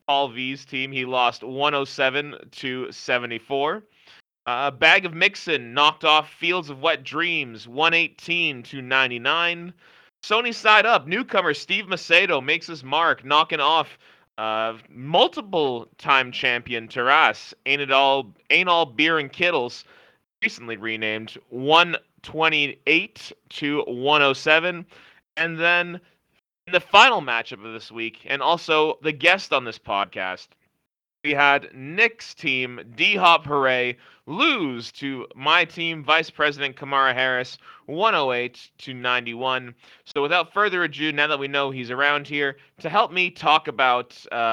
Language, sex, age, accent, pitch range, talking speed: English, male, 30-49, American, 130-170 Hz, 130 wpm